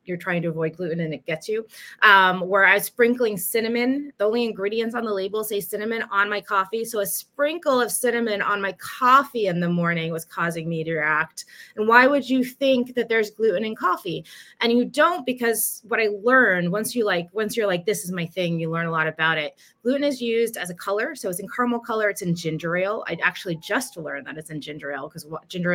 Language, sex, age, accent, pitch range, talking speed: English, female, 20-39, American, 180-230 Hz, 235 wpm